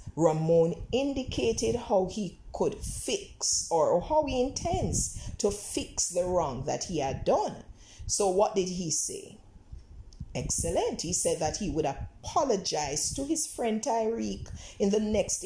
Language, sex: English, female